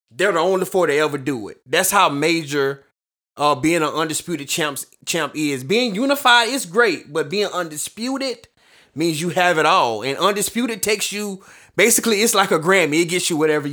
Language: English